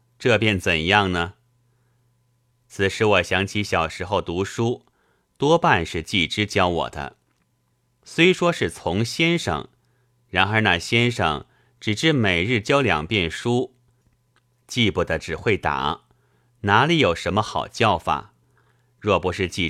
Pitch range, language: 95-125 Hz, Chinese